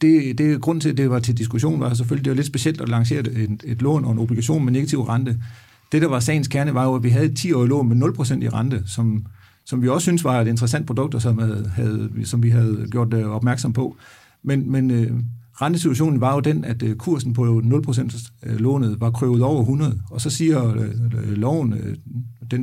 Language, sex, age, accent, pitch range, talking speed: Danish, male, 50-69, native, 115-135 Hz, 220 wpm